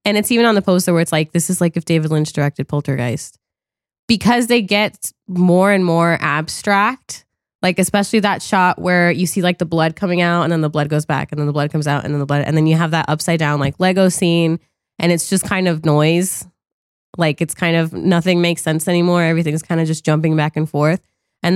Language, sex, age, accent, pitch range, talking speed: English, female, 20-39, American, 155-185 Hz, 235 wpm